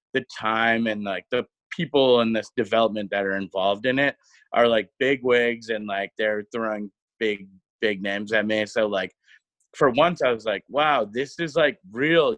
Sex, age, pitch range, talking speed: male, 20-39, 105-140 Hz, 190 wpm